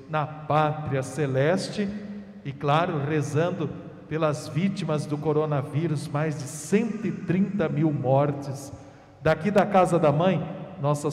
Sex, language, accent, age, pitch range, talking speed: male, Portuguese, Brazilian, 50-69, 150-200 Hz, 115 wpm